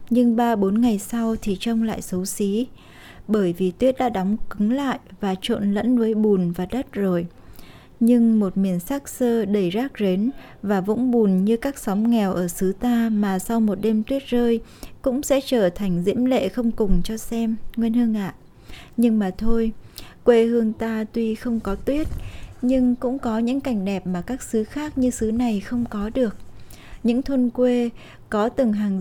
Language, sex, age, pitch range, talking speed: Vietnamese, female, 20-39, 200-240 Hz, 195 wpm